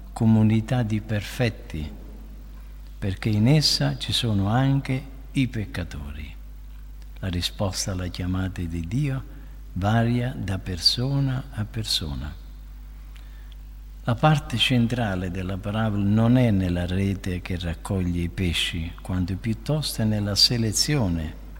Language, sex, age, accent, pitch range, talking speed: Italian, male, 50-69, native, 85-125 Hz, 115 wpm